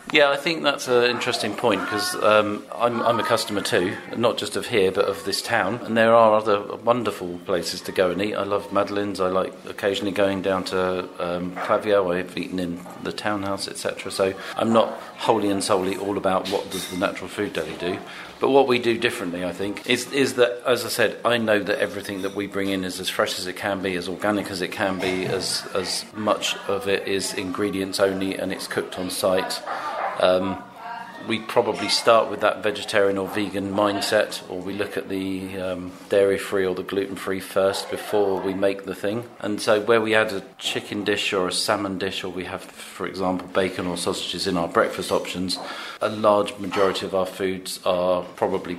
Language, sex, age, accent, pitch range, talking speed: English, male, 40-59, British, 95-105 Hz, 210 wpm